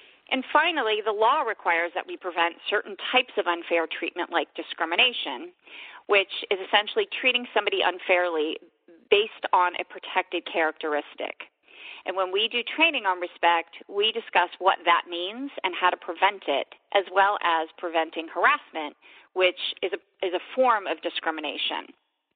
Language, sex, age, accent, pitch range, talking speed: English, female, 40-59, American, 170-235 Hz, 150 wpm